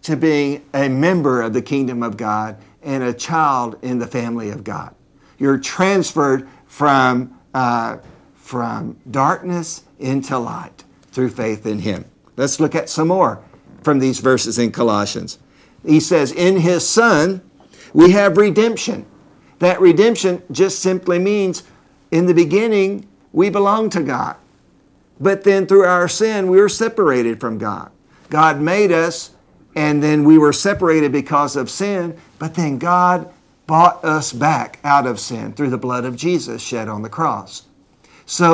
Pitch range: 130-180 Hz